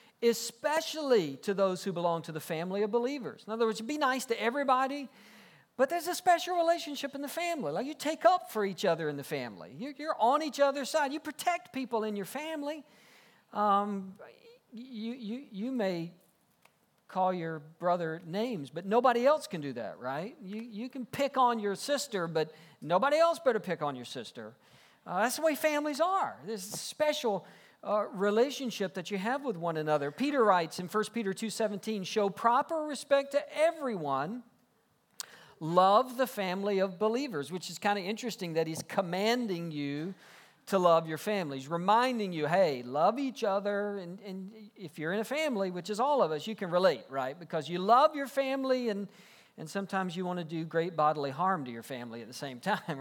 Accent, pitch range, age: American, 175-260 Hz, 50-69